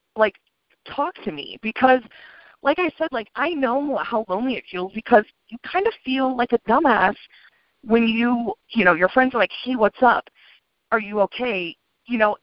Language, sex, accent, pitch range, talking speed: English, female, American, 175-230 Hz, 190 wpm